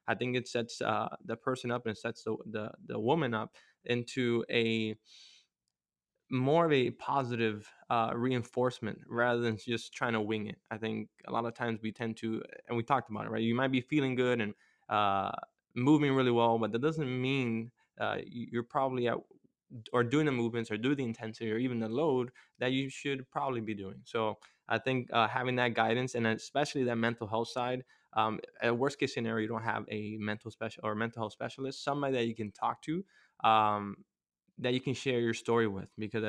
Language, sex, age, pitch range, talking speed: English, male, 20-39, 110-130 Hz, 205 wpm